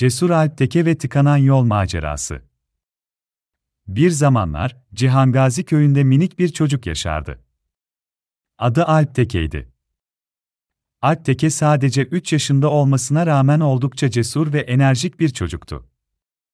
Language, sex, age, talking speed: Turkish, male, 40-59, 105 wpm